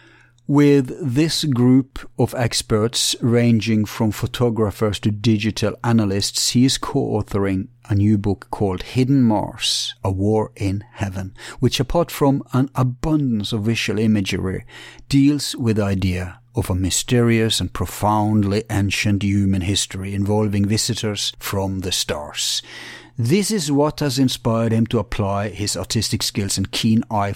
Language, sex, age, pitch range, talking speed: English, male, 60-79, 105-125 Hz, 140 wpm